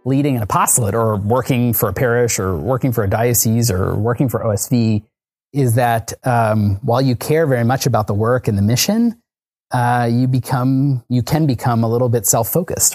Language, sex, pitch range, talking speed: English, male, 115-130 Hz, 190 wpm